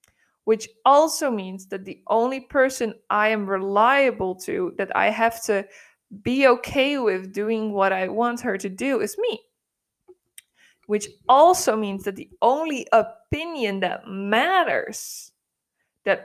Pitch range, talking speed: 195-240 Hz, 135 wpm